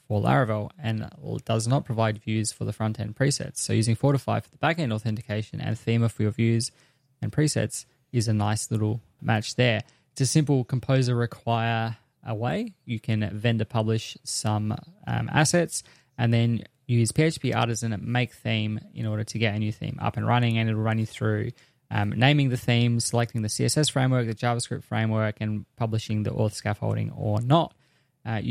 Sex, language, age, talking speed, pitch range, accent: male, English, 10-29, 185 wpm, 110-130 Hz, Australian